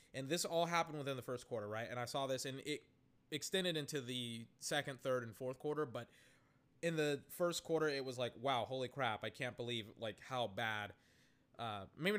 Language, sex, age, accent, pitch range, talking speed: English, male, 20-39, American, 120-145 Hz, 200 wpm